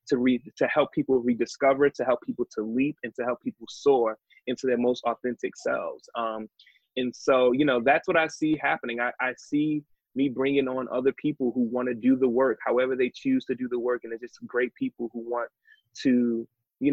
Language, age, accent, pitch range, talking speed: English, 20-39, American, 115-140 Hz, 215 wpm